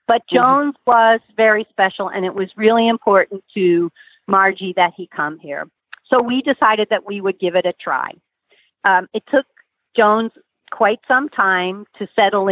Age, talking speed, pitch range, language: 50-69, 170 wpm, 185-215 Hz, English